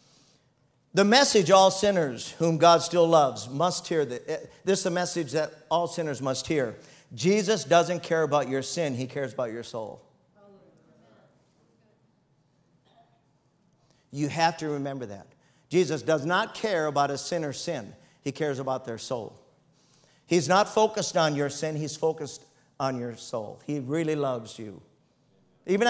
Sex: male